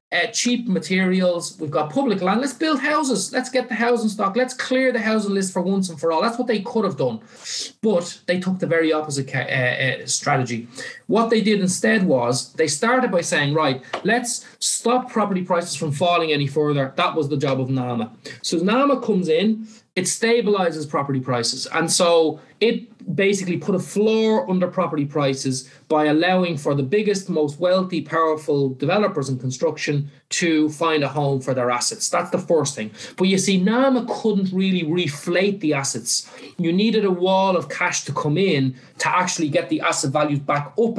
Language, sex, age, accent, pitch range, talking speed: English, male, 30-49, Irish, 150-210 Hz, 190 wpm